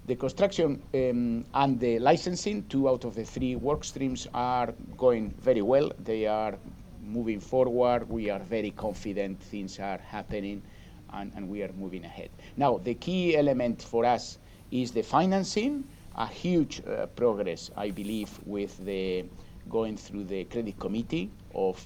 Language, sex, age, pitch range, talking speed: English, male, 50-69, 95-120 Hz, 155 wpm